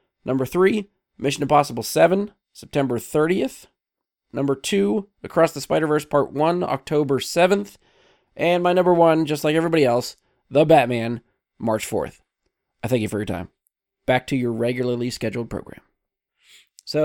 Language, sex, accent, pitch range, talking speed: English, male, American, 130-160 Hz, 145 wpm